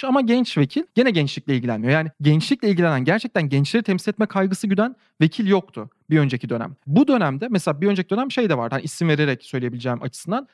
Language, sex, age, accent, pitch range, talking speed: Turkish, male, 40-59, native, 155-225 Hz, 195 wpm